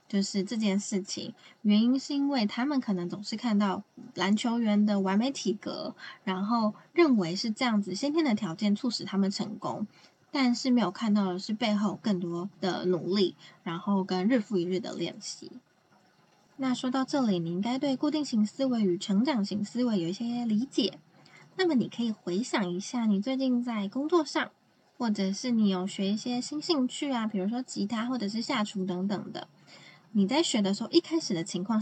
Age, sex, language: 10-29, female, Chinese